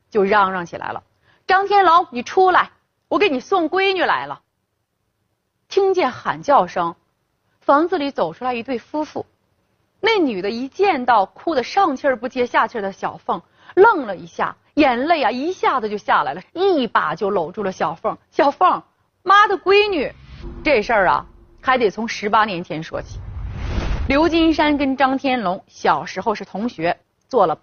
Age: 30-49